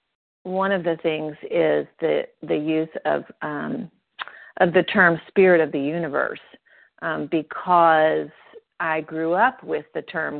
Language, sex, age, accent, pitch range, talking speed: English, female, 40-59, American, 155-180 Hz, 145 wpm